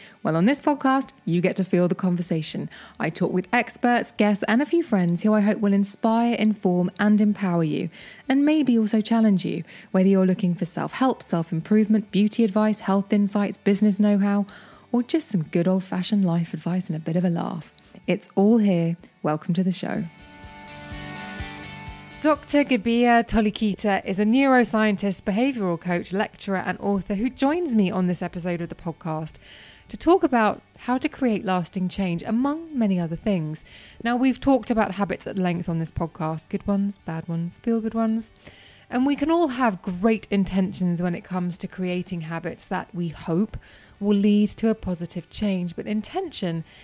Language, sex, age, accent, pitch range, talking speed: English, female, 20-39, British, 180-225 Hz, 175 wpm